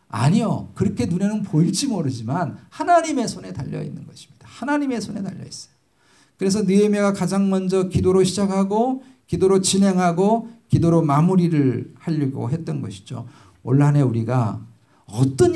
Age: 50-69